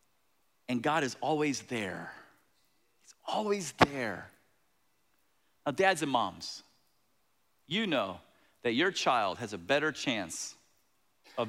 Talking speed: 115 wpm